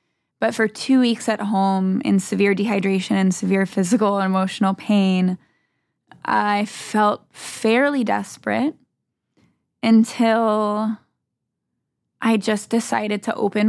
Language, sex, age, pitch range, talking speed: English, female, 10-29, 190-220 Hz, 110 wpm